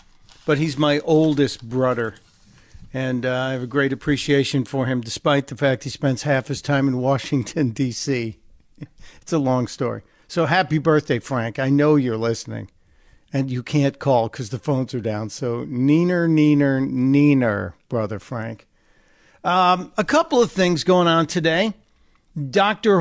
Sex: male